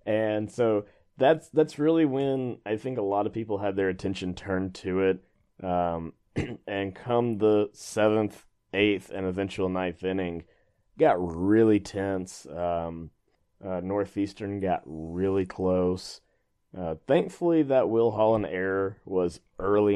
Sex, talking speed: male, 135 wpm